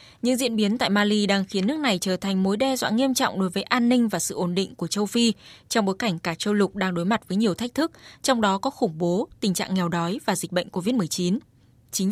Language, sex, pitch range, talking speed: Vietnamese, female, 190-245 Hz, 270 wpm